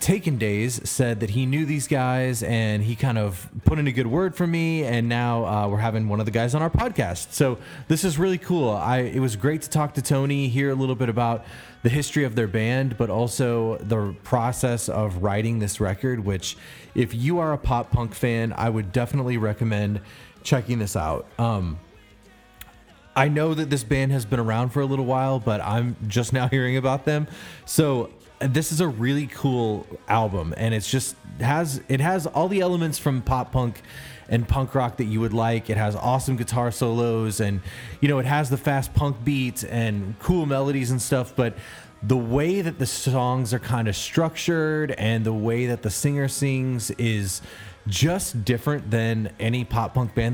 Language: English